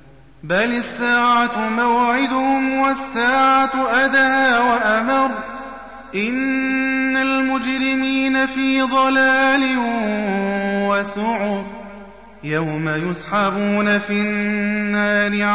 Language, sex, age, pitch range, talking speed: Arabic, male, 30-49, 180-255 Hz, 60 wpm